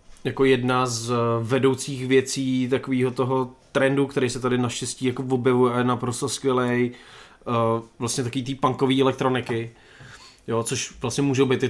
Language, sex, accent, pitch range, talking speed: Czech, male, native, 115-130 Hz, 160 wpm